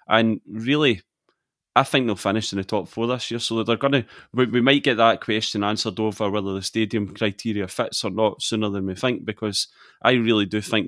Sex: male